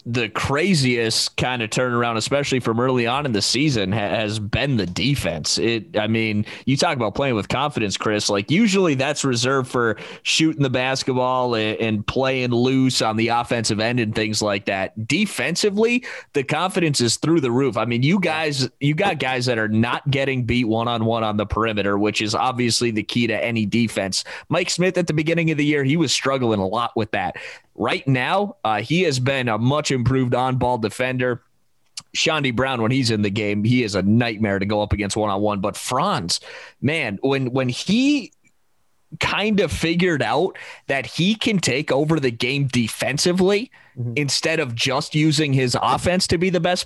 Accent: American